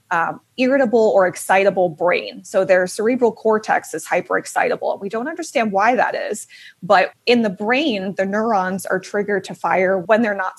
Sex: female